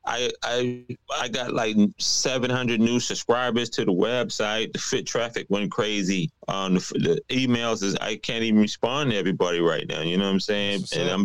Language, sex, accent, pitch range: English, male, American, 95-125 Hz